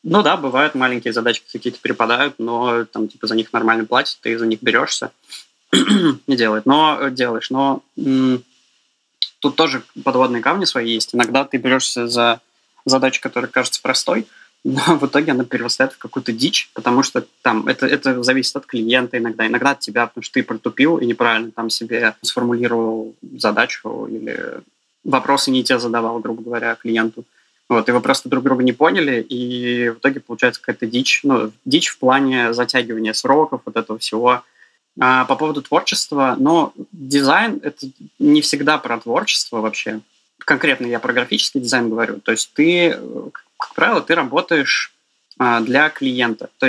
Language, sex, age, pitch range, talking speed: Russian, male, 20-39, 115-135 Hz, 165 wpm